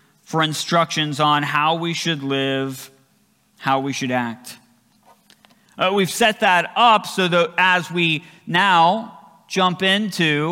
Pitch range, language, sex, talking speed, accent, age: 155-200 Hz, English, male, 130 wpm, American, 40-59